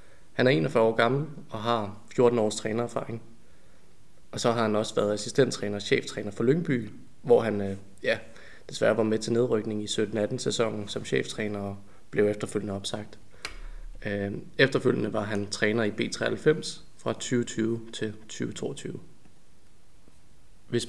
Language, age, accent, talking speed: Danish, 20-39, native, 140 wpm